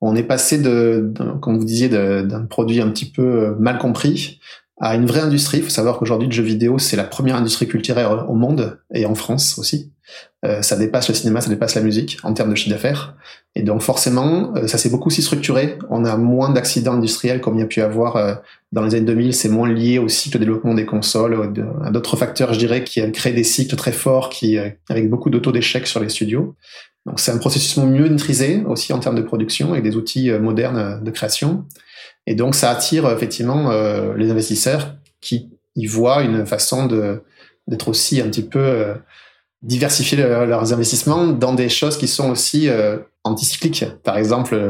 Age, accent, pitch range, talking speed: 20-39, French, 110-135 Hz, 210 wpm